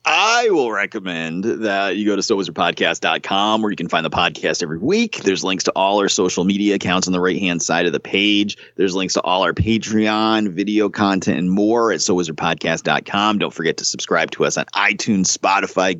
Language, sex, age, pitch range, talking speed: English, male, 30-49, 95-120 Hz, 195 wpm